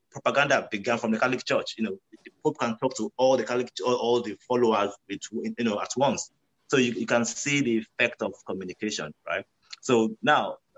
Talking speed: 205 wpm